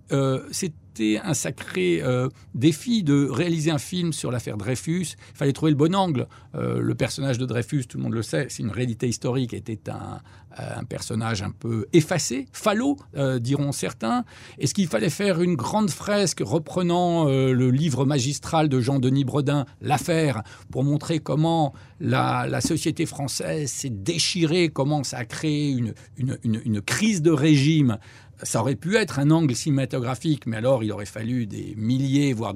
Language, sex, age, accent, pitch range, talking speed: French, male, 50-69, French, 115-155 Hz, 180 wpm